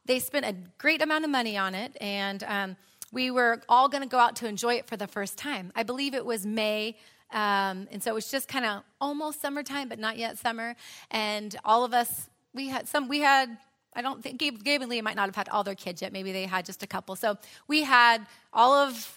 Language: English